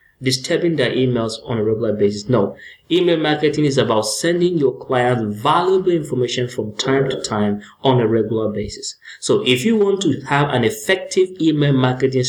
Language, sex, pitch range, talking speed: English, male, 115-155 Hz, 170 wpm